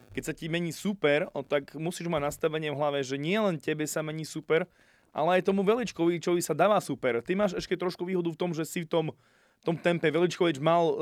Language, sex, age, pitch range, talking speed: Slovak, male, 20-39, 135-155 Hz, 225 wpm